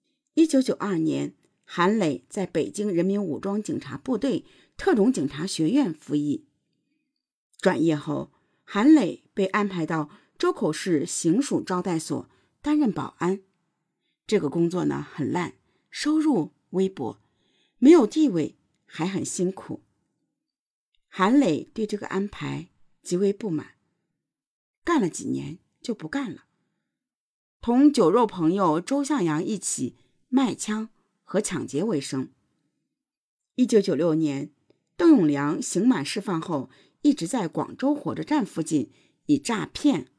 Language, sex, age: Chinese, female, 50-69